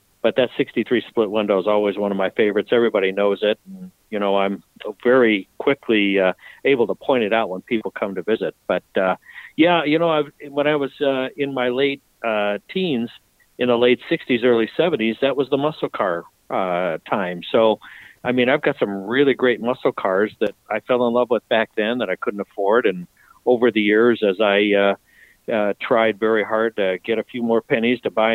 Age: 60-79